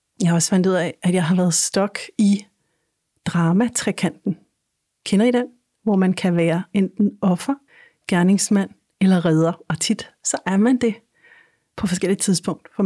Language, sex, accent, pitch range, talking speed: Danish, female, native, 170-205 Hz, 165 wpm